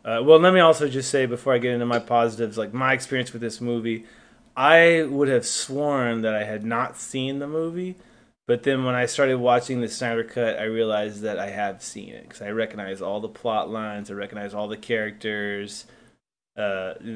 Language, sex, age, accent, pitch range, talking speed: English, male, 20-39, American, 115-135 Hz, 205 wpm